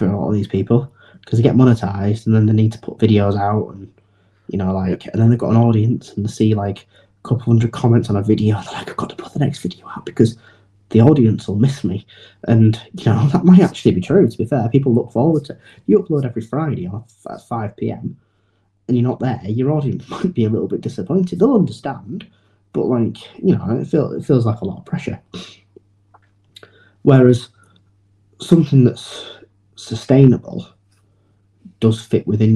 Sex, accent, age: male, British, 20-39